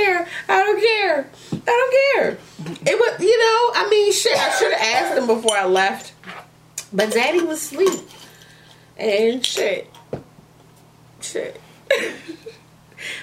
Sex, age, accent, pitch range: female, 30-49, American, 150-225 Hz